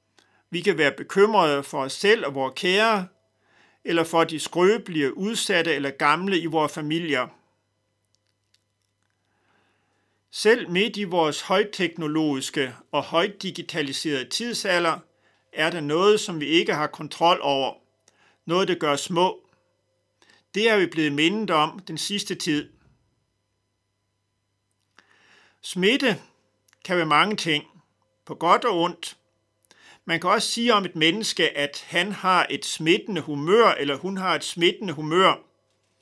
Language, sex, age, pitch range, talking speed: Danish, male, 50-69, 115-180 Hz, 130 wpm